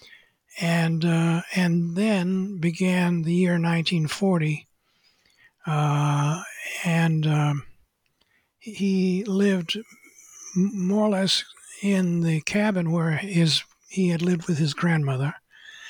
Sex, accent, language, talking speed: male, American, English, 100 wpm